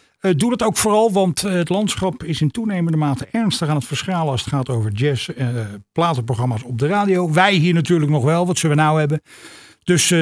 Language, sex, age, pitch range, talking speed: Dutch, male, 50-69, 140-195 Hz, 215 wpm